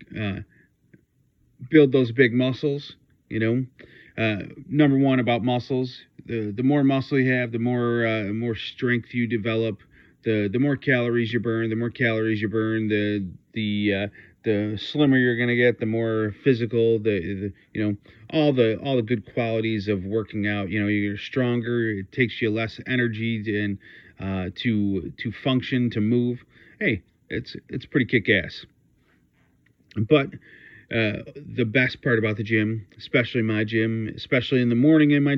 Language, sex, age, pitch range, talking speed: English, male, 40-59, 105-125 Hz, 170 wpm